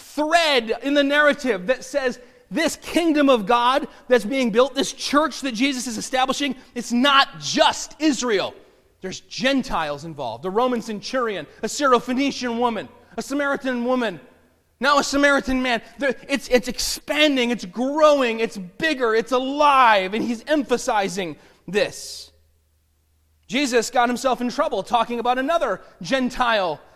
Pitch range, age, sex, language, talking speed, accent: 230-285 Hz, 30-49, male, English, 135 wpm, American